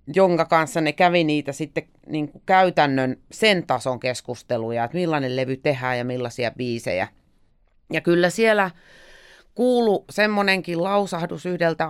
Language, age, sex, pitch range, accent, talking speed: Finnish, 30-49, female, 135-190 Hz, native, 130 wpm